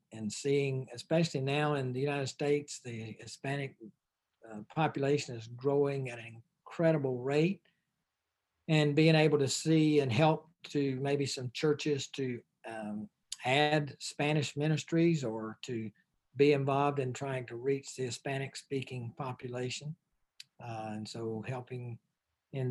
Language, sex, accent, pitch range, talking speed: English, male, American, 125-150 Hz, 130 wpm